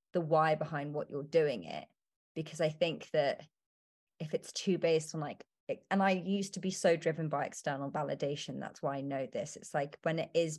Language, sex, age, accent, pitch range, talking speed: English, female, 30-49, British, 150-170 Hz, 205 wpm